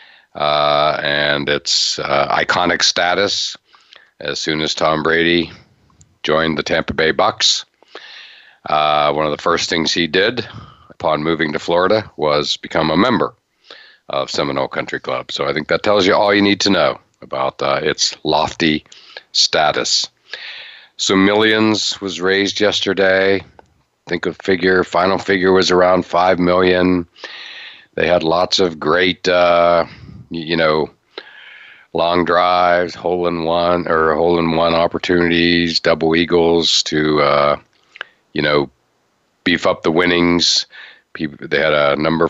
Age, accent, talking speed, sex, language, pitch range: 50-69, American, 140 wpm, male, English, 75-90 Hz